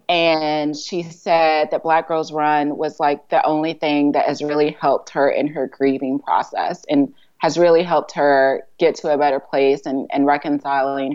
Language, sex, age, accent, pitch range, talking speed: English, female, 30-49, American, 145-170 Hz, 185 wpm